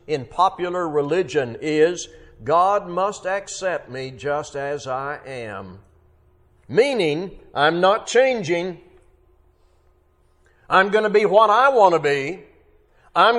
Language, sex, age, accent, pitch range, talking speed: English, male, 60-79, American, 145-230 Hz, 115 wpm